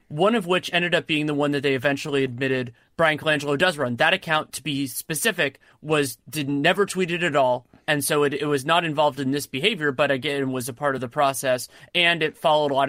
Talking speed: 235 wpm